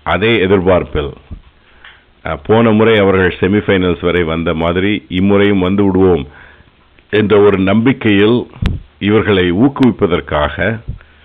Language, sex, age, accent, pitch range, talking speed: Tamil, male, 50-69, native, 80-100 Hz, 90 wpm